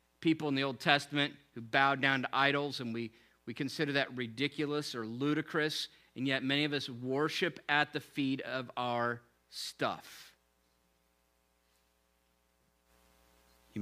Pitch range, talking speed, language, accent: 110-150 Hz, 135 wpm, English, American